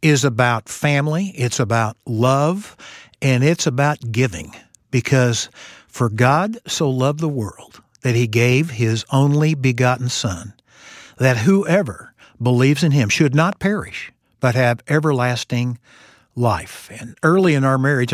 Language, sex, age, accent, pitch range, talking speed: English, male, 60-79, American, 125-155 Hz, 135 wpm